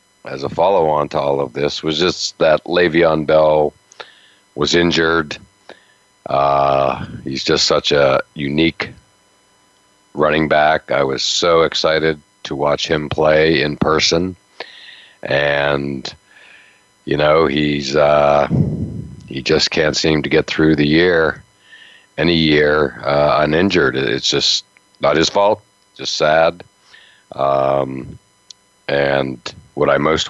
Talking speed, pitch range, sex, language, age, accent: 125 wpm, 70-80 Hz, male, English, 50-69, American